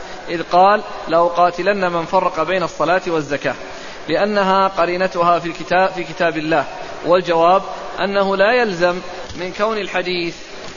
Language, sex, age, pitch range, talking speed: Arabic, male, 20-39, 175-200 Hz, 125 wpm